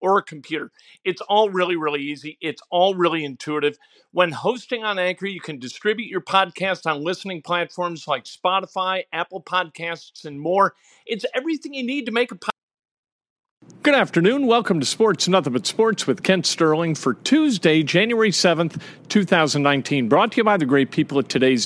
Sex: male